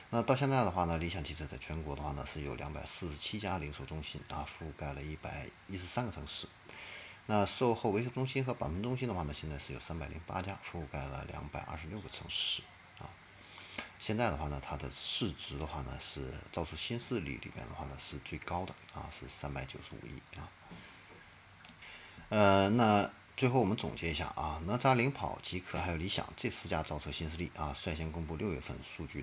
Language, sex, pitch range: Chinese, male, 75-95 Hz